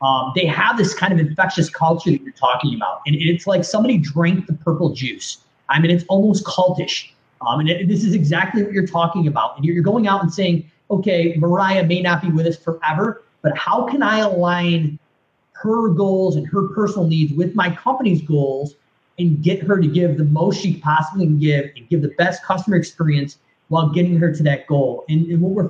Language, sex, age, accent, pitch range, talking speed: English, male, 30-49, American, 155-190 Hz, 210 wpm